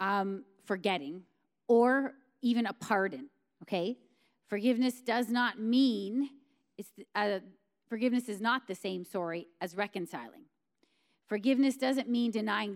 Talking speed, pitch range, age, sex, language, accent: 120 wpm, 195-255 Hz, 30-49, female, English, American